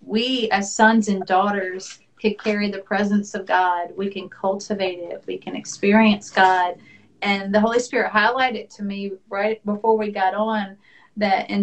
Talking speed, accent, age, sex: 170 wpm, American, 40-59, female